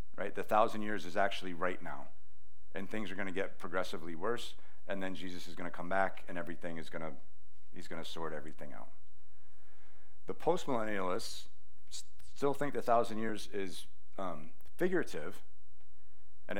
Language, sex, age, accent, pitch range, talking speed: English, male, 40-59, American, 85-110 Hz, 165 wpm